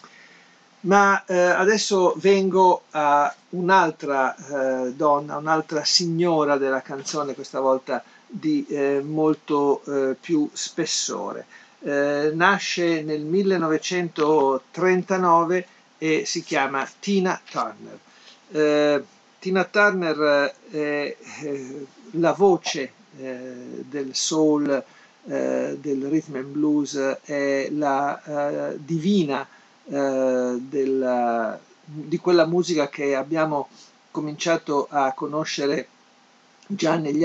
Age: 50-69